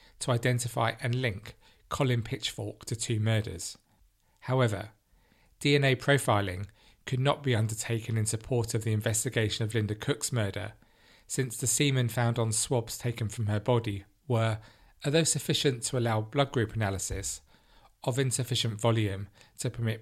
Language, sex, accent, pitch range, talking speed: English, male, British, 105-125 Hz, 145 wpm